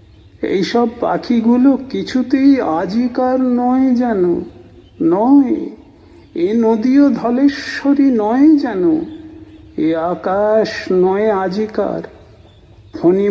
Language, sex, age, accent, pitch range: Bengali, male, 50-69, native, 165-235 Hz